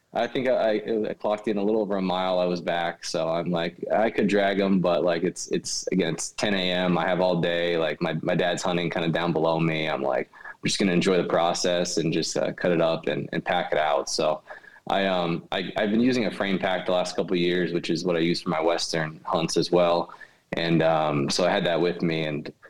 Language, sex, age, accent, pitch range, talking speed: English, male, 20-39, American, 85-95 Hz, 260 wpm